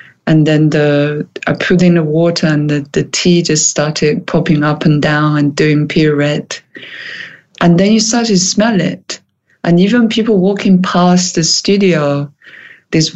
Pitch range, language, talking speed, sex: 150-180 Hz, English, 170 wpm, female